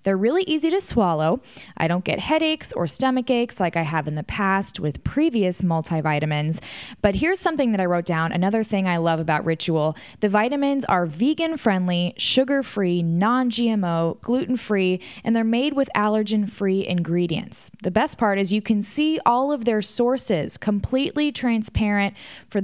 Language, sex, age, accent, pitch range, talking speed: English, female, 10-29, American, 180-255 Hz, 160 wpm